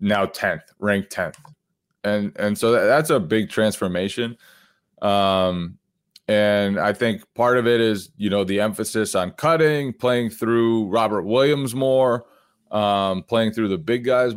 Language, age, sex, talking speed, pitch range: English, 20-39, male, 150 wpm, 100-115 Hz